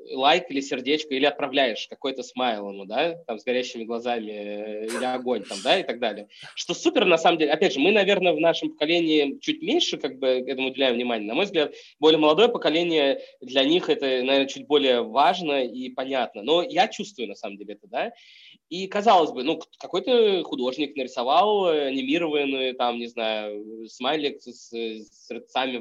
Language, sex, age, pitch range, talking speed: Russian, male, 20-39, 130-175 Hz, 180 wpm